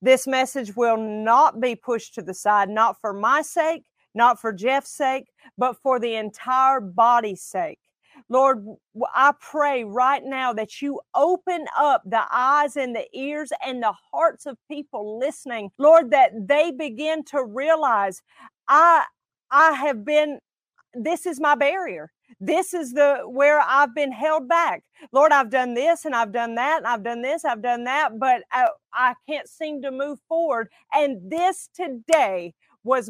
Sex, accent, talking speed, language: female, American, 165 wpm, English